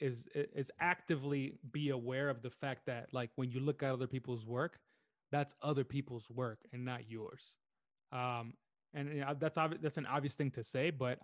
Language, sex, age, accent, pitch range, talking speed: English, male, 20-39, American, 120-140 Hz, 200 wpm